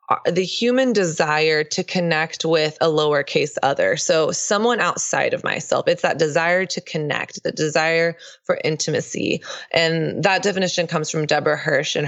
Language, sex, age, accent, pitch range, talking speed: English, female, 20-39, American, 155-185 Hz, 155 wpm